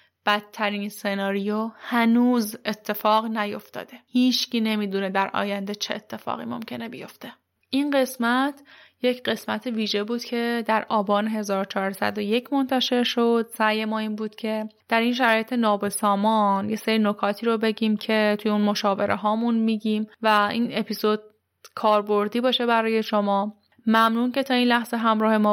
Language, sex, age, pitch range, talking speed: Persian, female, 10-29, 210-240 Hz, 140 wpm